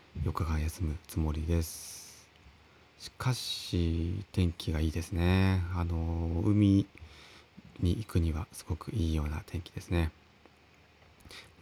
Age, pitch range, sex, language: 30-49, 80-100 Hz, male, Japanese